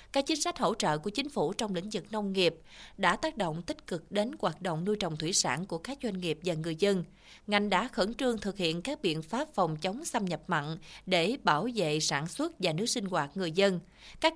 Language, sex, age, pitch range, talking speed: Vietnamese, female, 20-39, 175-235 Hz, 240 wpm